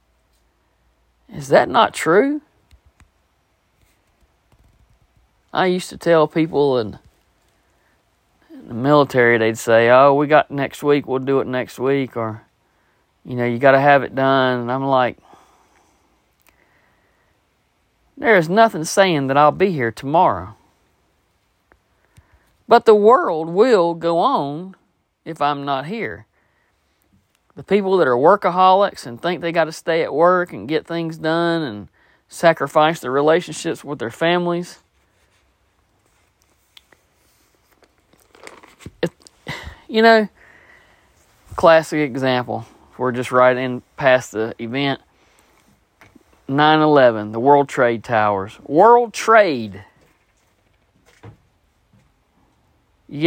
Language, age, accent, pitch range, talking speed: English, 40-59, American, 115-170 Hz, 110 wpm